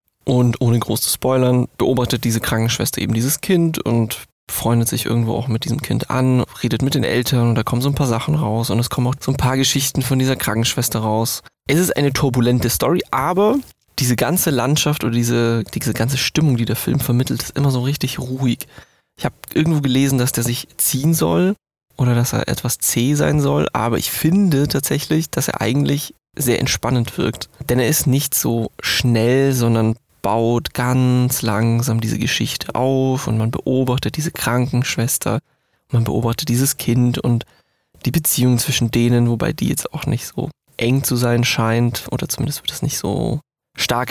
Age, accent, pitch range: 20-39, German, 115-140 Hz